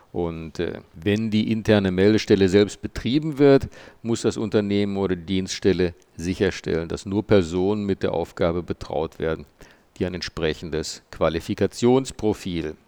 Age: 50-69